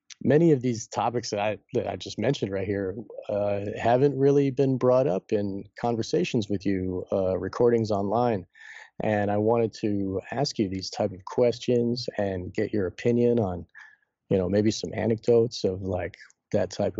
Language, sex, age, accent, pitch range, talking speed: English, male, 40-59, American, 100-120 Hz, 175 wpm